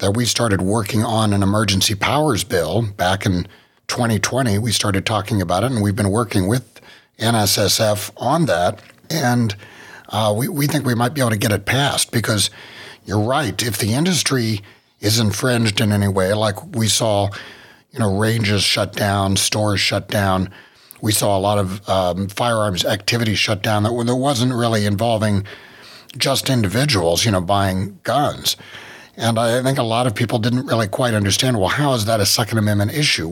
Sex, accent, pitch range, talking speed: male, American, 100-120 Hz, 180 wpm